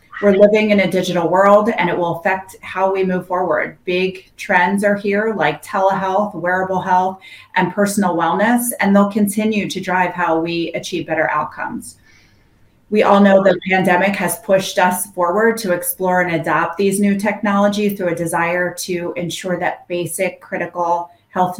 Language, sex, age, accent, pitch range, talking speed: English, female, 30-49, American, 170-195 Hz, 165 wpm